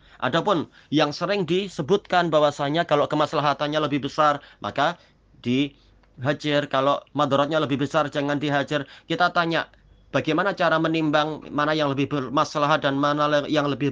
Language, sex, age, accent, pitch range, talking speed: Indonesian, male, 30-49, native, 145-170 Hz, 130 wpm